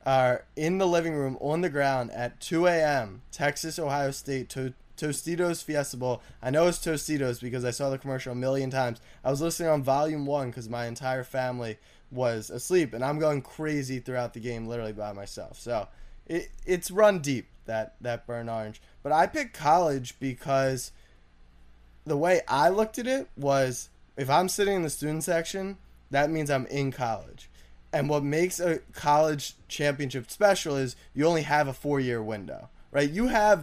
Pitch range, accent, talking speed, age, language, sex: 120-160 Hz, American, 180 wpm, 20-39, English, male